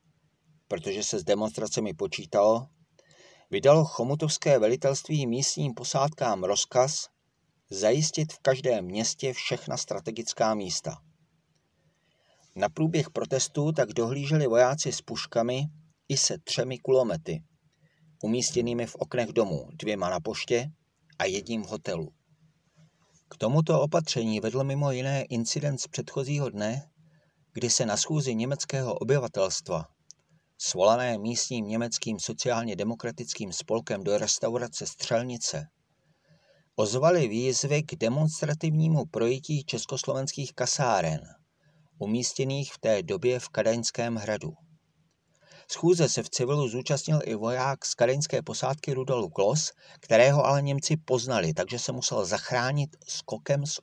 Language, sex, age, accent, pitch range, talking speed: Czech, male, 40-59, native, 120-155 Hz, 115 wpm